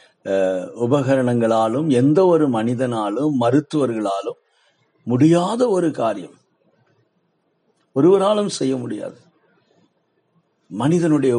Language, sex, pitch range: Tamil, male, 105-145 Hz